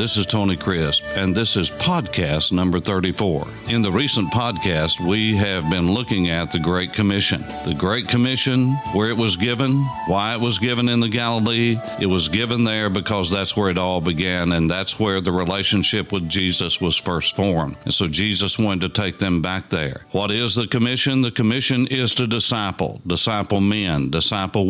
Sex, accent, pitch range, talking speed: male, American, 95-120 Hz, 185 wpm